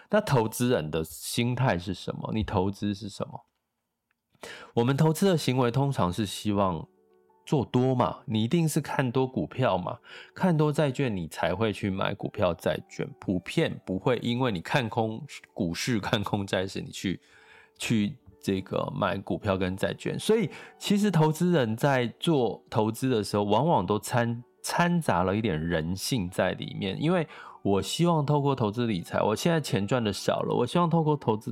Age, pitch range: 20-39, 95-130 Hz